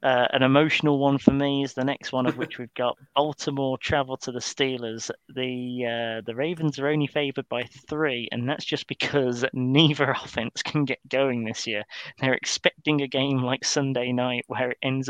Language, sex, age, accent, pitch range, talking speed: English, male, 30-49, British, 125-145 Hz, 195 wpm